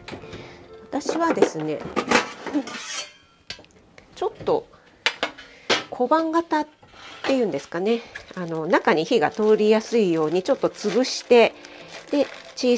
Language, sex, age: Japanese, female, 40-59